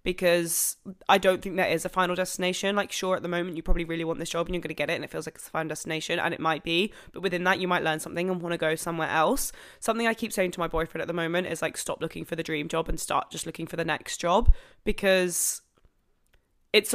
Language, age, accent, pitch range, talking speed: English, 20-39, British, 165-200 Hz, 275 wpm